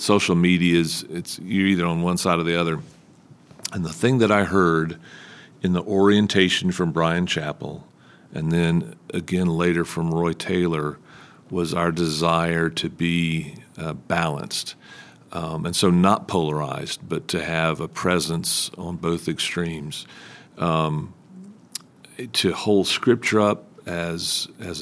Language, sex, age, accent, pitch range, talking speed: English, male, 50-69, American, 80-95 Hz, 140 wpm